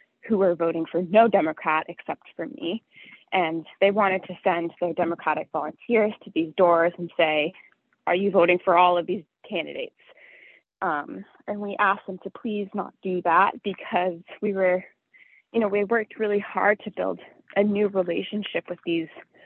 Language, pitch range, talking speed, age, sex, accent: English, 170-205 Hz, 175 wpm, 20-39, female, American